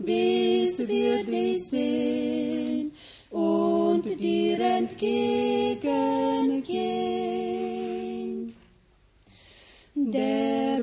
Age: 30-49